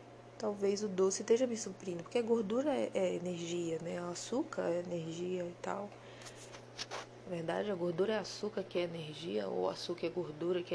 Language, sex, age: Portuguese, female, 20-39